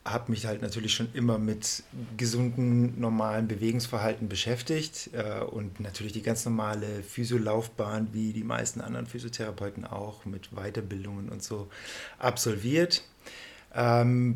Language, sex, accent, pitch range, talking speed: German, male, German, 110-125 Hz, 125 wpm